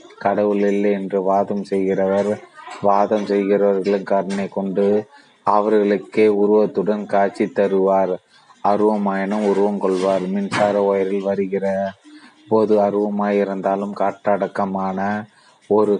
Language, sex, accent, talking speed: Tamil, male, native, 85 wpm